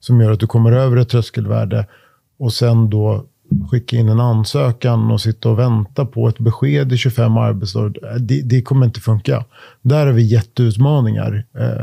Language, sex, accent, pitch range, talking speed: Swedish, male, native, 110-135 Hz, 170 wpm